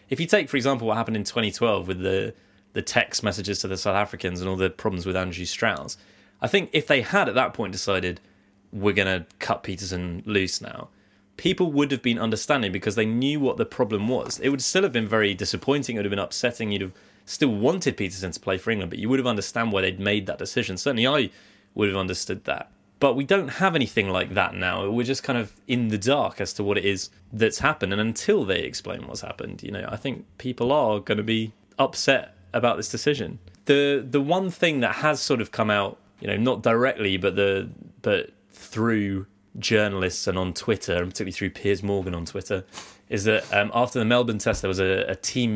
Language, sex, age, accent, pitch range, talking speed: English, male, 20-39, British, 95-120 Hz, 225 wpm